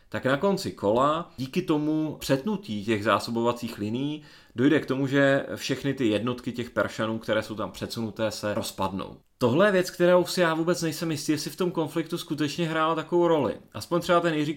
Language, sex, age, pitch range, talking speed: Czech, male, 30-49, 115-155 Hz, 190 wpm